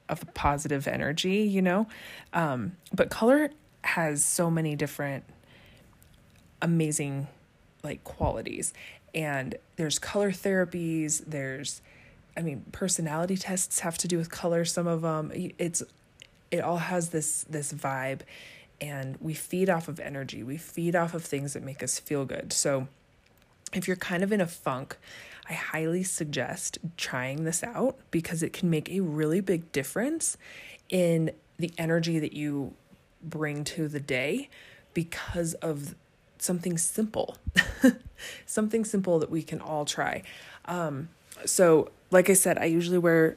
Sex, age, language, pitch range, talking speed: female, 20-39, English, 145-175 Hz, 145 wpm